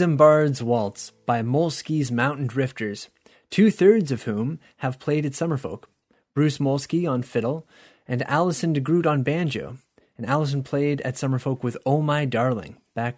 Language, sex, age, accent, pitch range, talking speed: English, male, 30-49, American, 130-160 Hz, 145 wpm